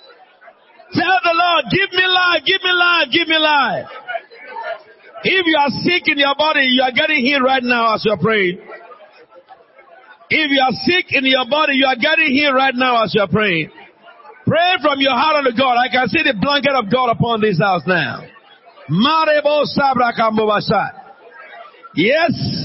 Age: 50-69